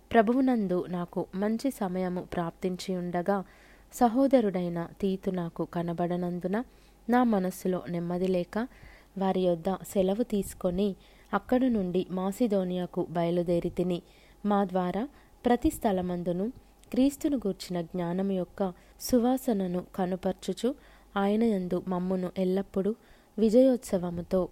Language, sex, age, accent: Telugu, female, 20-39, native